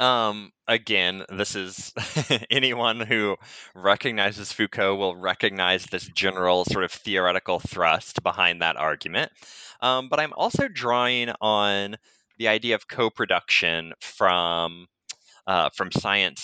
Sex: male